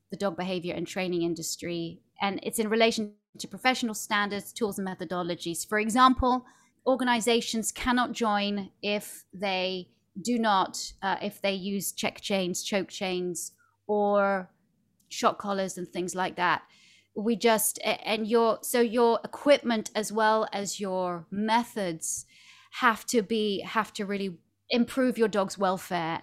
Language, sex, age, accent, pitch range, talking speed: English, female, 30-49, British, 195-235 Hz, 140 wpm